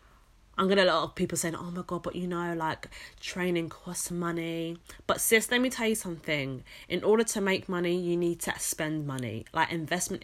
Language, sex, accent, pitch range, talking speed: English, female, British, 155-190 Hz, 205 wpm